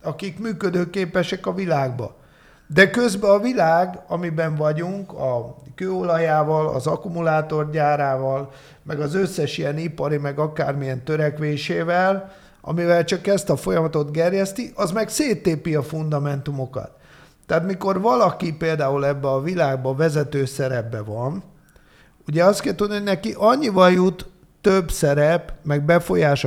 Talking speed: 125 wpm